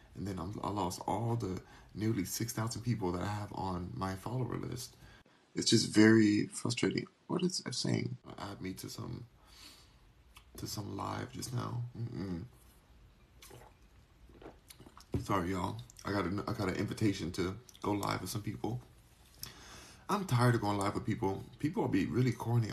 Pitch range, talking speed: 95-120 Hz, 165 wpm